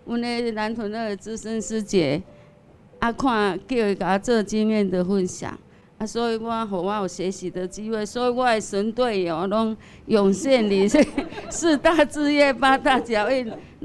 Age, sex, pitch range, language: 50-69, female, 210-255 Hz, Chinese